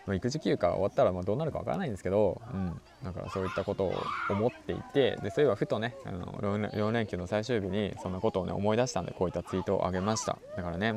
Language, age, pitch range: Japanese, 20-39, 95-145 Hz